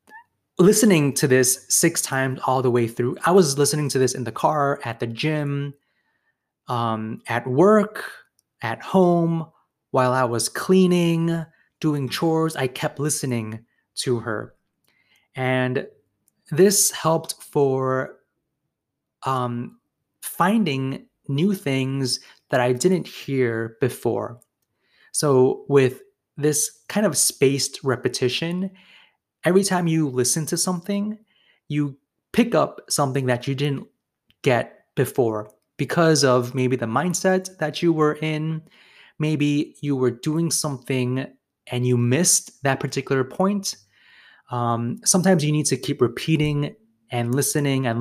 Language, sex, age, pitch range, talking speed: English, male, 20-39, 125-165 Hz, 125 wpm